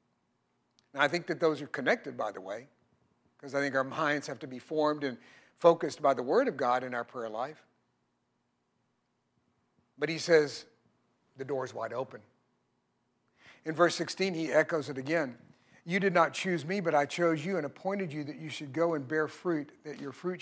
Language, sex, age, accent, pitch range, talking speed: English, male, 50-69, American, 140-170 Hz, 195 wpm